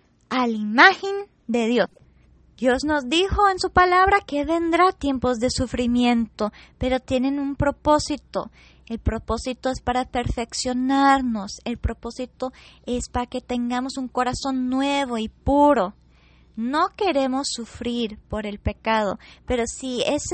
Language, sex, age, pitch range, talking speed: Spanish, female, 20-39, 225-290 Hz, 135 wpm